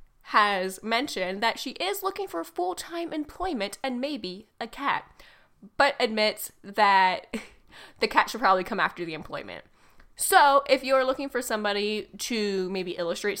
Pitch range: 195-280 Hz